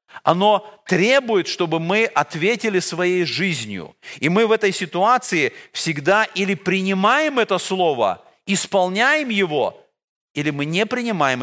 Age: 40-59